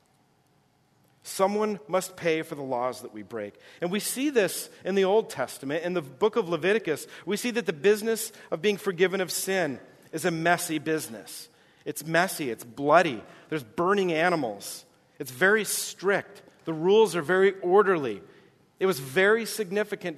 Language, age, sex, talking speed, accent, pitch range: English, 40-59, male, 165 wpm, American, 150-195 Hz